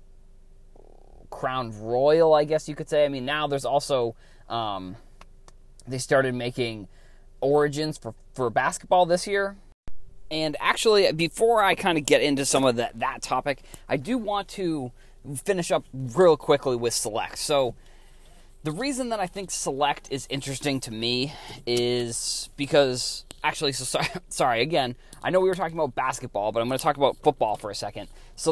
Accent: American